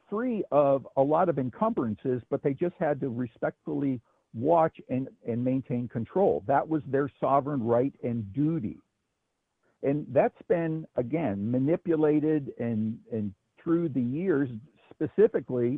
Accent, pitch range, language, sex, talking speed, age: American, 120-155 Hz, English, male, 135 wpm, 60-79